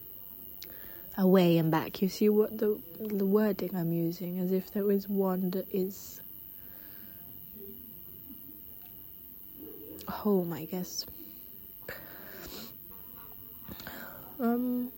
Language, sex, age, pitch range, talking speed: English, female, 20-39, 175-210 Hz, 90 wpm